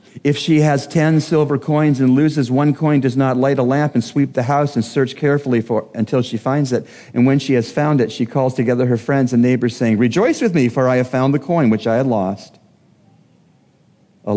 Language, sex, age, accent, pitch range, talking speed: English, male, 40-59, American, 115-145 Hz, 230 wpm